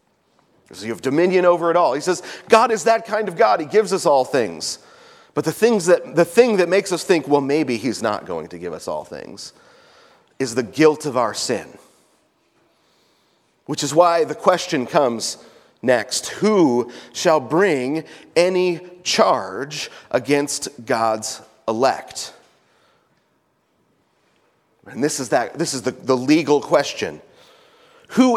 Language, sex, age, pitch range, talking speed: English, male, 30-49, 145-215 Hz, 150 wpm